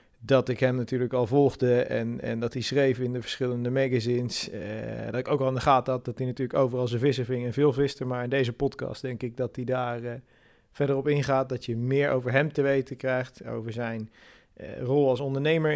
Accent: Dutch